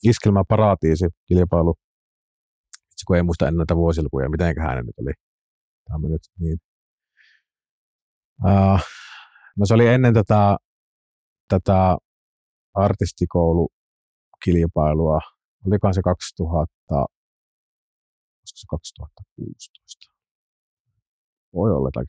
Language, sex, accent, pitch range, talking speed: Finnish, male, native, 85-105 Hz, 85 wpm